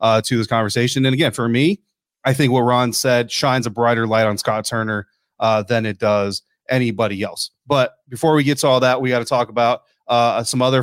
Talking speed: 225 wpm